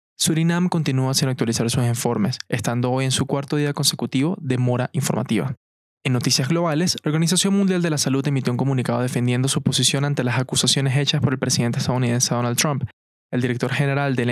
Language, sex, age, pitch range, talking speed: Spanish, male, 20-39, 125-150 Hz, 190 wpm